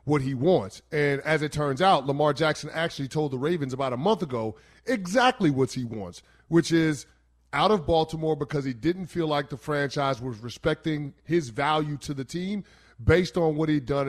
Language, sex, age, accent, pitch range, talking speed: English, male, 30-49, American, 135-180 Hz, 195 wpm